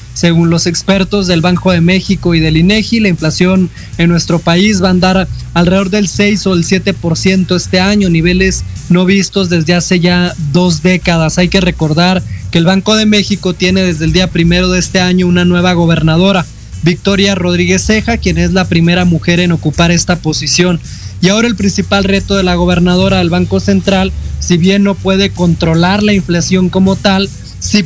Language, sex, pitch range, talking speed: Spanish, male, 170-195 Hz, 185 wpm